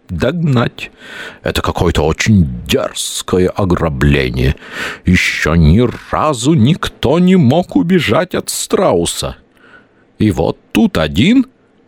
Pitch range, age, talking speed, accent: 75-115 Hz, 50-69, 90 wpm, native